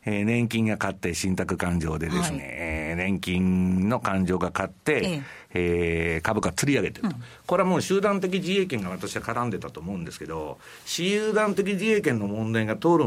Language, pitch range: Japanese, 100-165 Hz